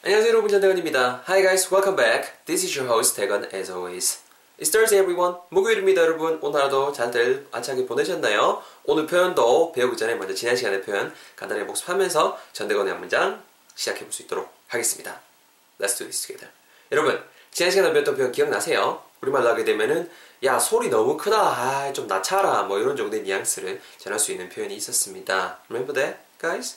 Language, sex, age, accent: Korean, male, 20-39, native